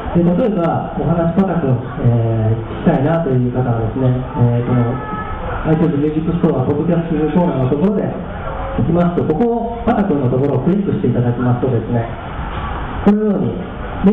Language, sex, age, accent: Japanese, male, 40-59, native